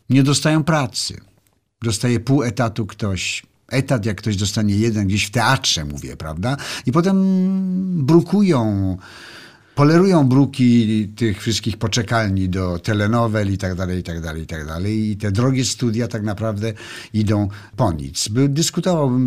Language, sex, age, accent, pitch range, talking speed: Polish, male, 50-69, native, 95-125 Hz, 145 wpm